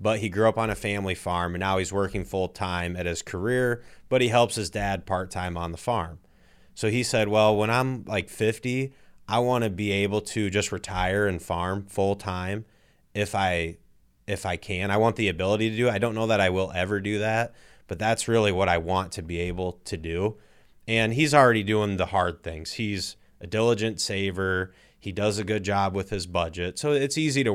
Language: English